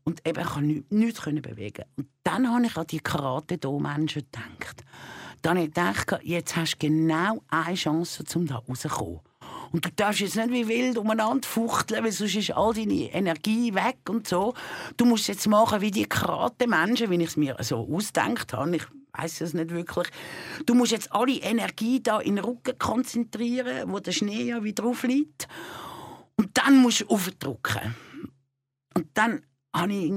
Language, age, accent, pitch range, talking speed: German, 50-69, Austrian, 150-230 Hz, 185 wpm